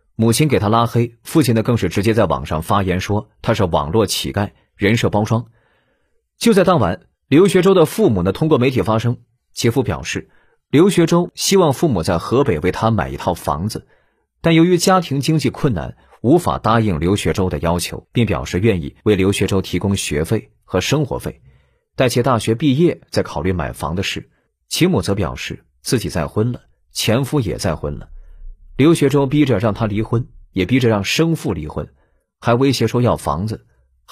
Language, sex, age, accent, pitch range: Chinese, male, 30-49, native, 85-125 Hz